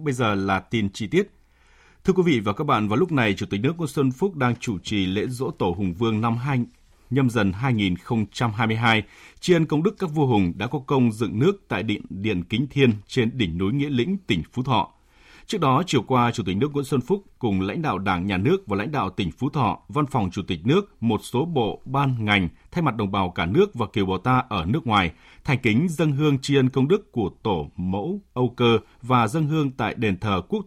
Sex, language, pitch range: male, Vietnamese, 100-140 Hz